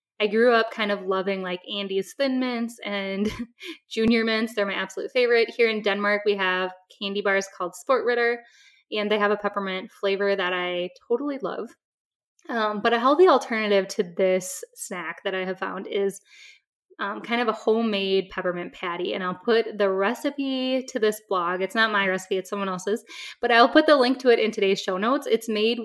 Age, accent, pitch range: 10-29, American, 195-235 Hz